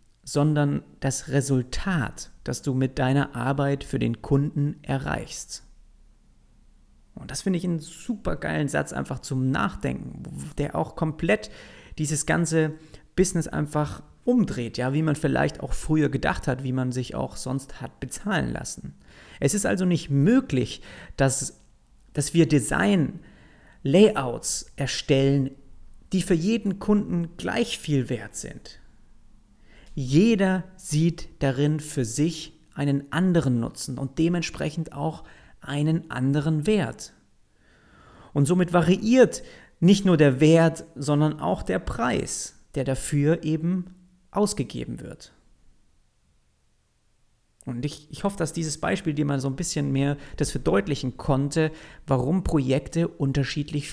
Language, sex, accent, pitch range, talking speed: German, male, German, 135-170 Hz, 125 wpm